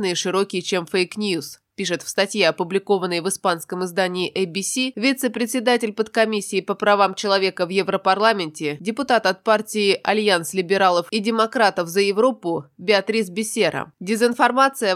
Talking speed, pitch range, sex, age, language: 120 wpm, 180-215 Hz, female, 20-39, Russian